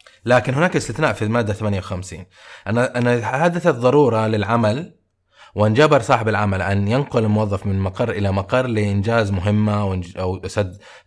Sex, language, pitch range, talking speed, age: male, Arabic, 105-130 Hz, 135 wpm, 20-39